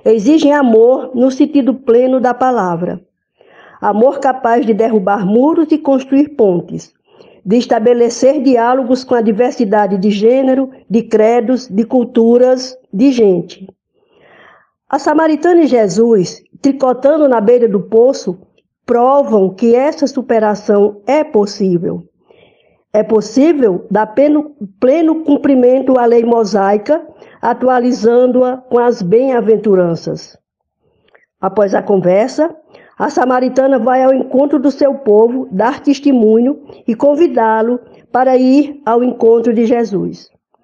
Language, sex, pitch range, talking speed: English, female, 220-270 Hz, 115 wpm